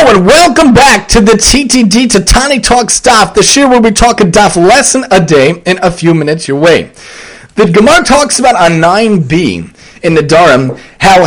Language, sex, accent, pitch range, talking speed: English, male, American, 195-255 Hz, 195 wpm